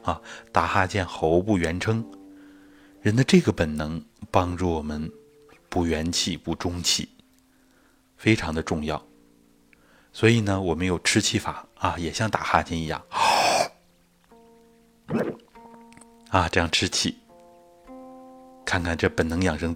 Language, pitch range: Chinese, 85-110 Hz